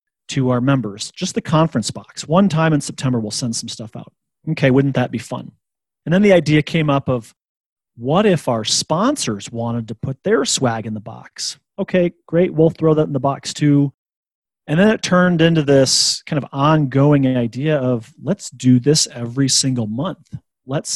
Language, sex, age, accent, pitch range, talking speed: English, male, 30-49, American, 125-150 Hz, 190 wpm